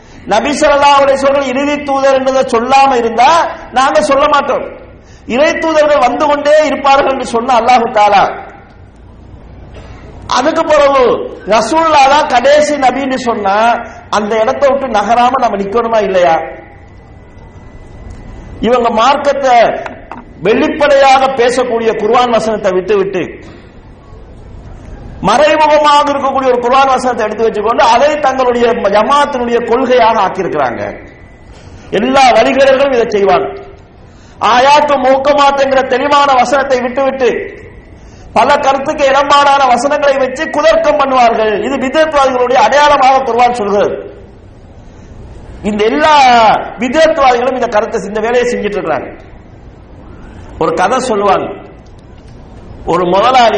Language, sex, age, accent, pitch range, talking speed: English, male, 50-69, Indian, 215-280 Hz, 55 wpm